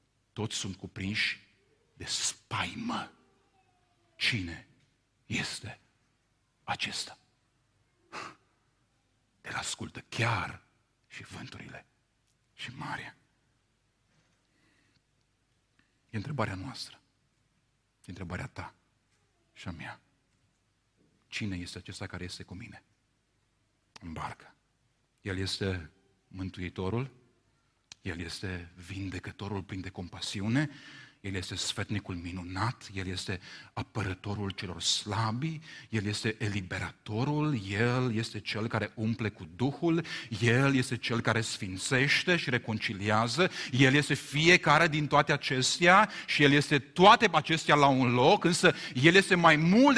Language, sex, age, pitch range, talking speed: Romanian, male, 50-69, 100-155 Hz, 105 wpm